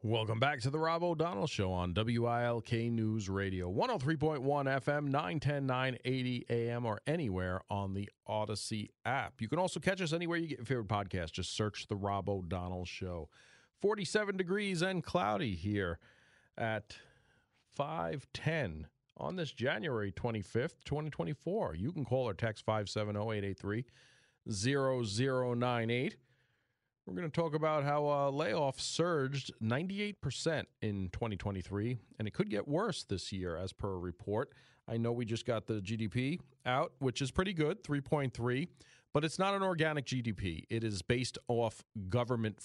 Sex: male